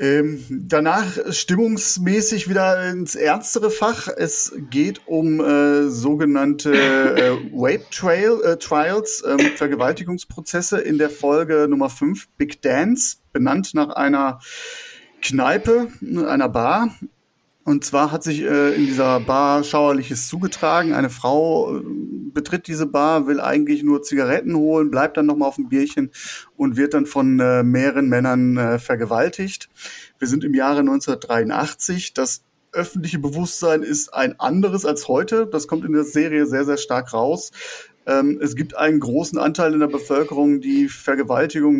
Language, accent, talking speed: German, German, 145 wpm